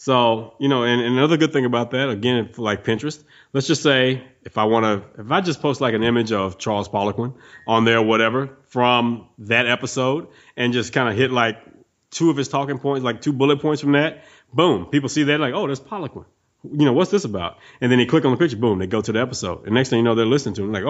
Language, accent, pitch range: English, American, 115-140 Hz